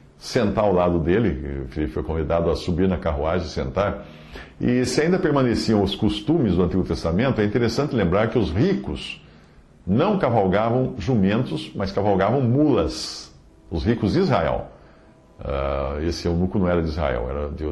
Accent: Brazilian